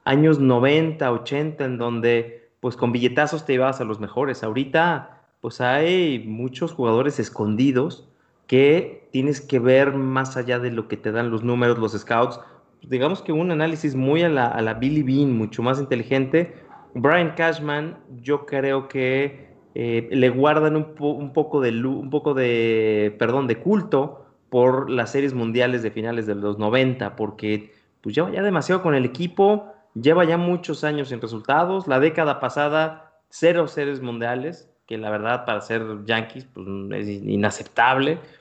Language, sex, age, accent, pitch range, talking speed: Spanish, male, 30-49, Mexican, 120-155 Hz, 165 wpm